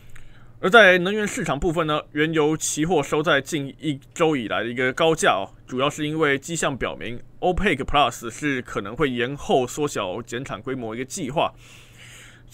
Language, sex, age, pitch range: Chinese, male, 20-39, 125-155 Hz